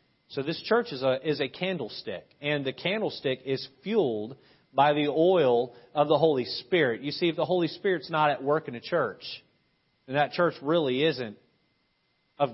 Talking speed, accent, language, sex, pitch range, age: 180 wpm, American, English, male, 195-255 Hz, 40-59